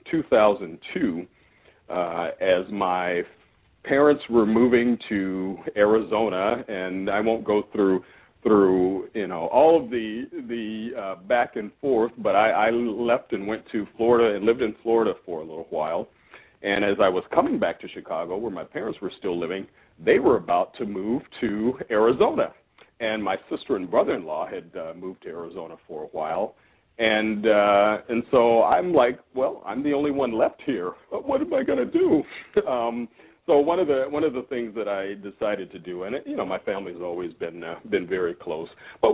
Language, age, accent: English, 40-59, American